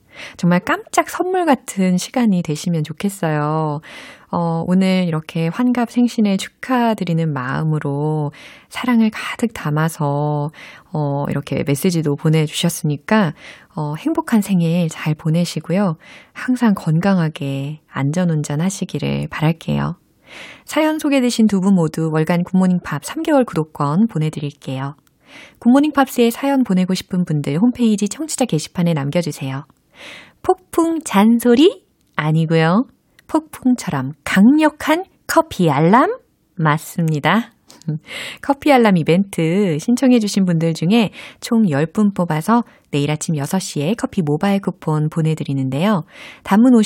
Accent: native